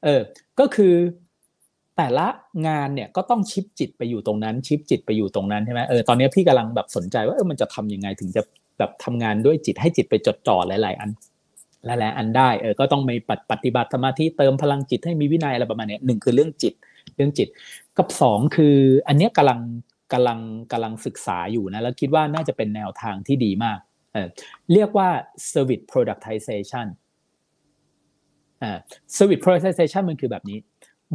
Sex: male